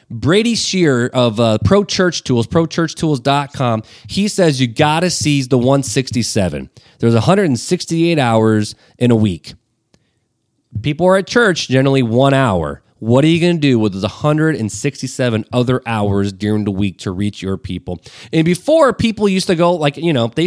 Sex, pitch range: male, 115-160 Hz